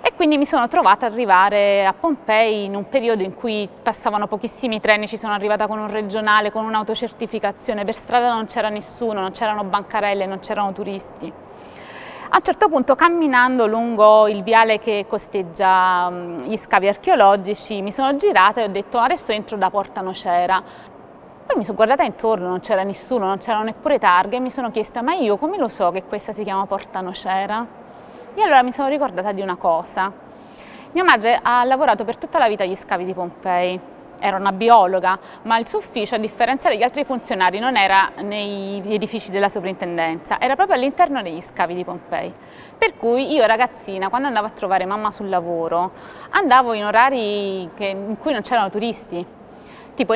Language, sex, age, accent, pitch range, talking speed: Italian, female, 20-39, native, 200-250 Hz, 185 wpm